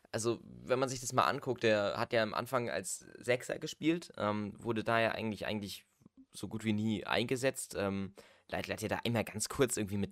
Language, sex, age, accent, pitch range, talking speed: German, male, 20-39, German, 100-125 Hz, 215 wpm